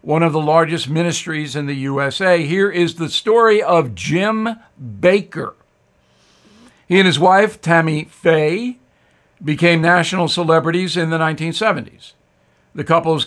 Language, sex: English, male